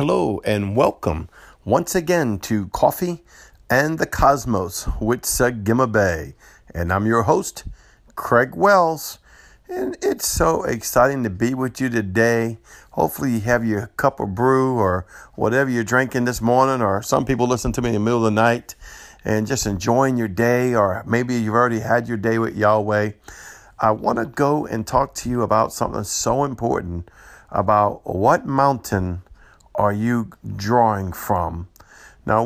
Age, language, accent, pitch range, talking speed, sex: 50-69, English, American, 105-125 Hz, 160 wpm, male